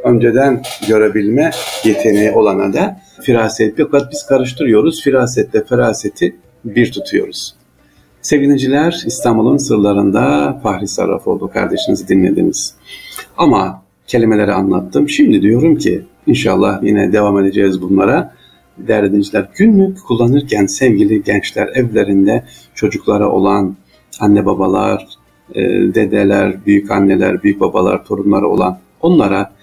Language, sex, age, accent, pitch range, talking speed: Turkish, male, 50-69, native, 100-130 Hz, 100 wpm